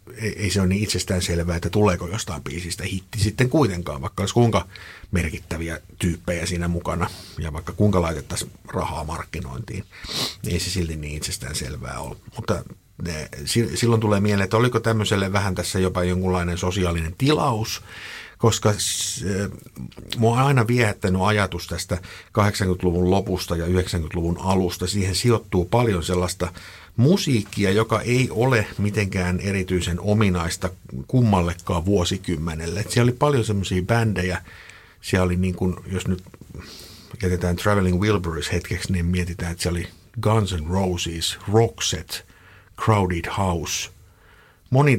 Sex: male